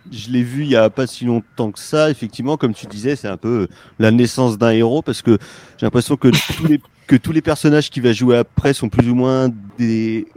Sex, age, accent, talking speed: male, 30-49, French, 245 wpm